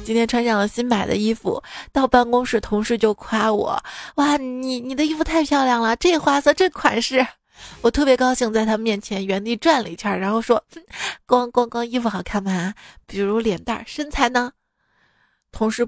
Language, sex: Chinese, female